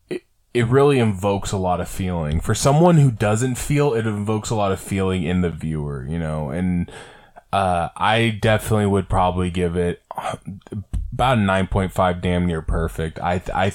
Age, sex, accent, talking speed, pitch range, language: 20-39, male, American, 170 wpm, 90-110 Hz, English